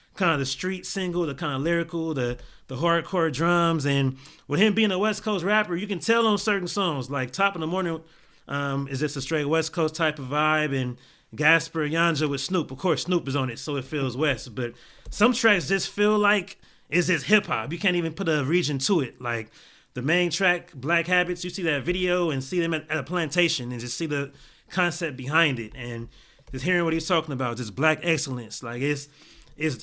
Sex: male